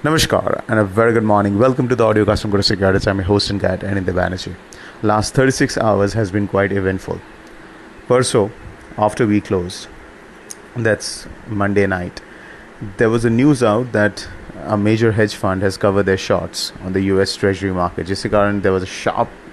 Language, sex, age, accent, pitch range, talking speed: English, male, 30-49, Indian, 100-110 Hz, 185 wpm